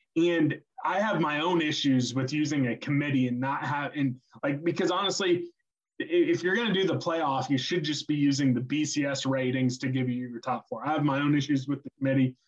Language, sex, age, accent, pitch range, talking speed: English, male, 20-39, American, 135-160 Hz, 220 wpm